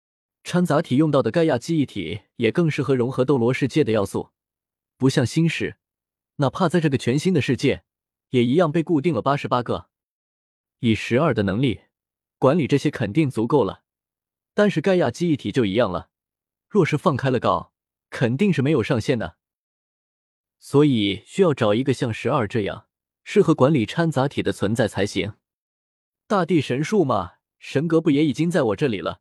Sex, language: male, Chinese